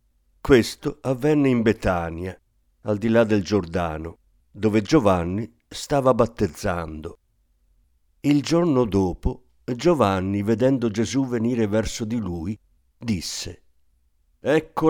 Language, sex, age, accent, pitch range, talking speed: Italian, male, 50-69, native, 90-130 Hz, 100 wpm